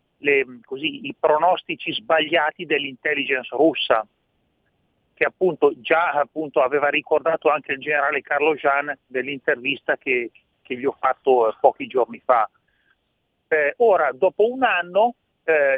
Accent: native